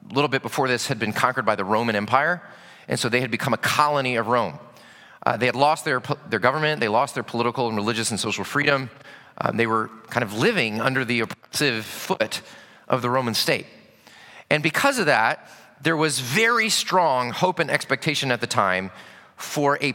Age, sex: 30-49, male